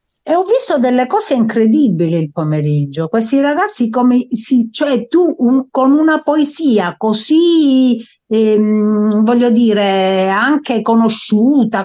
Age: 50-69